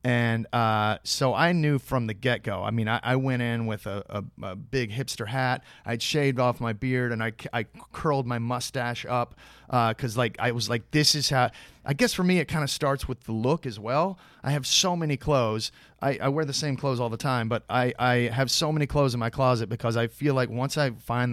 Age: 30-49